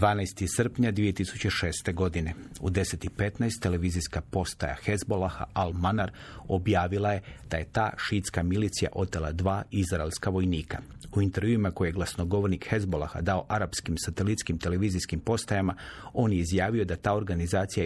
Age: 40-59